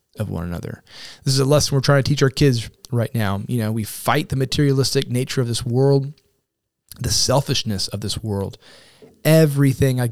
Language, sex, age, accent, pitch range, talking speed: English, male, 30-49, American, 100-135 Hz, 190 wpm